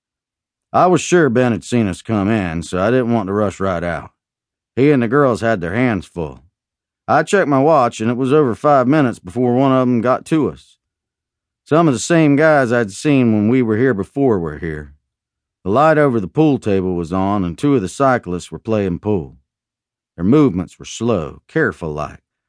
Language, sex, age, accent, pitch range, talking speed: English, male, 40-59, American, 90-130 Hz, 205 wpm